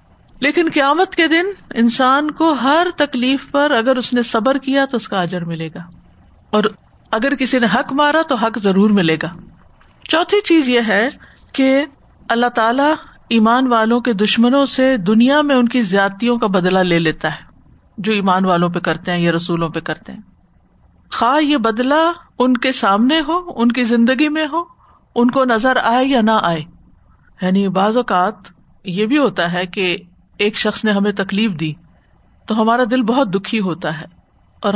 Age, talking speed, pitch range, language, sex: 50-69, 180 wpm, 195-265 Hz, Urdu, female